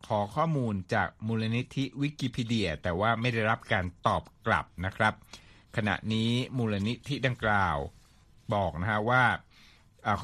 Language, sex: Thai, male